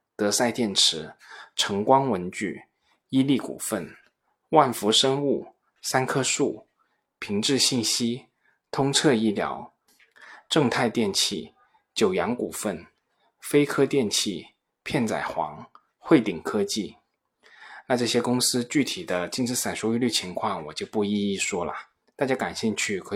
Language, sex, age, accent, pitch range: Chinese, male, 20-39, native, 105-135 Hz